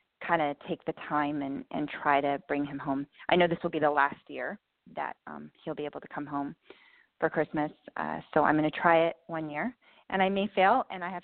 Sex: female